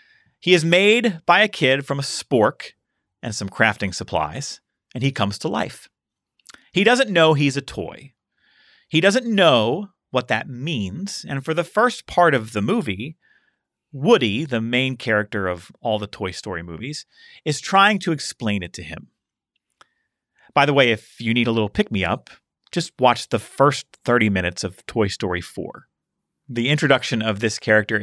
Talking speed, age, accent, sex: 170 wpm, 30-49, American, male